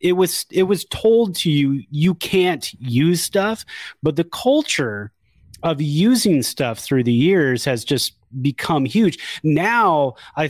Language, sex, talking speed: English, male, 150 wpm